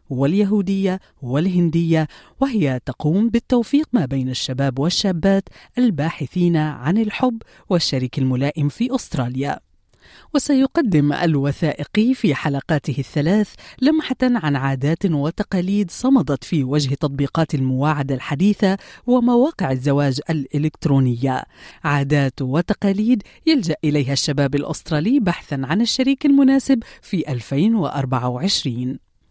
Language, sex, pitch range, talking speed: Arabic, female, 140-215 Hz, 95 wpm